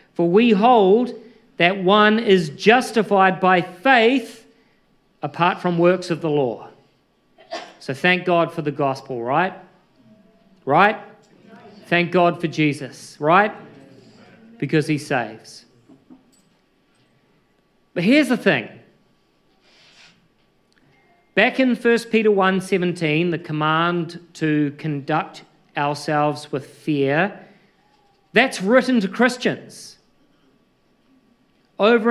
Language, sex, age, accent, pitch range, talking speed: English, male, 40-59, Australian, 160-220 Hz, 95 wpm